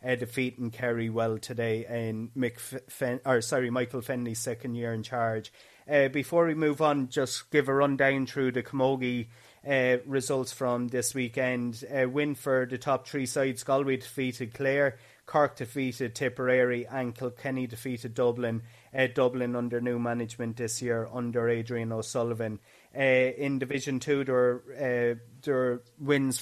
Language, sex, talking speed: English, male, 155 wpm